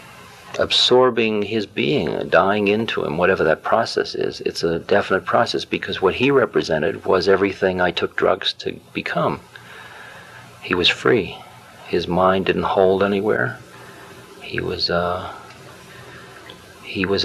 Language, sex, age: English, male, 50-69